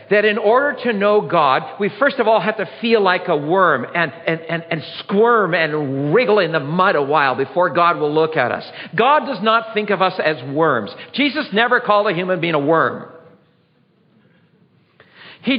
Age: 50-69